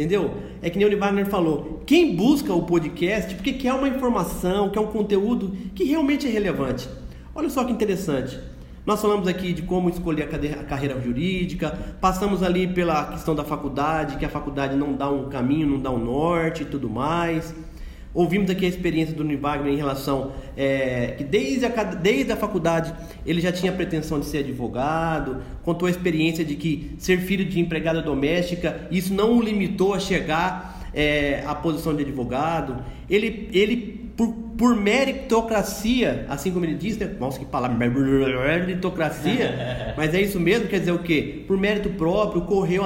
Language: Portuguese